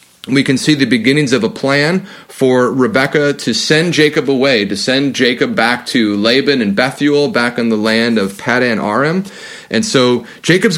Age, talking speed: 30-49, 180 wpm